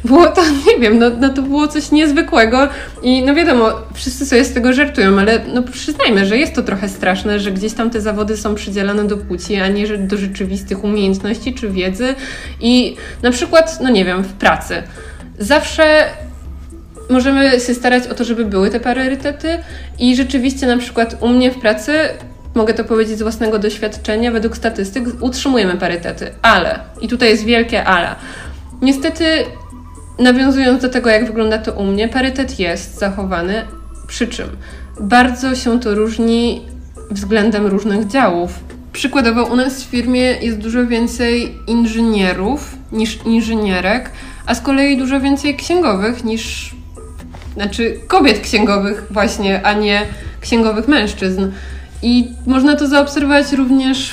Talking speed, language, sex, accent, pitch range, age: 150 wpm, Polish, female, native, 205-260 Hz, 20-39